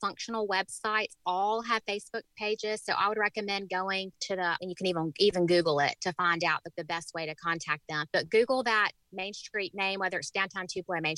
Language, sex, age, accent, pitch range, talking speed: English, female, 30-49, American, 175-215 Hz, 220 wpm